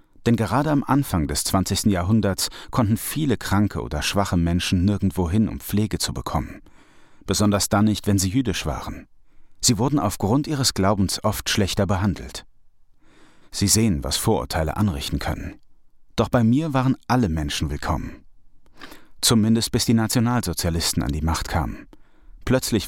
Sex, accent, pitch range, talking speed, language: male, German, 95-115 Hz, 145 wpm, German